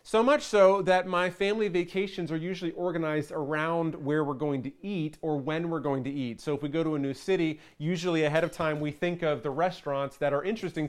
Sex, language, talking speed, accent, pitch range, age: male, English, 230 wpm, American, 145-180 Hz, 30-49